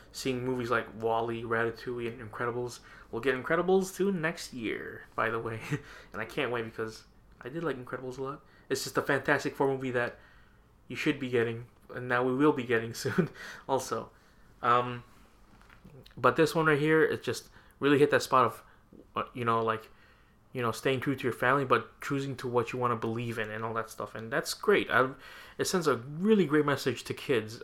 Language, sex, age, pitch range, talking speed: English, male, 20-39, 110-130 Hz, 205 wpm